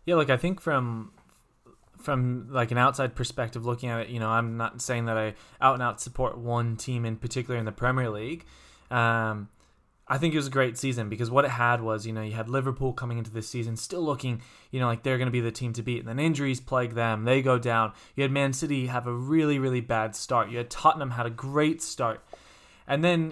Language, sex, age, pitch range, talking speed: English, male, 20-39, 125-145 Hz, 240 wpm